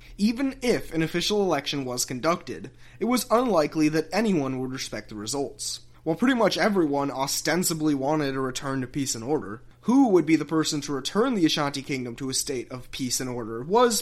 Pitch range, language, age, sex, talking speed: 130-180 Hz, English, 20-39, male, 195 wpm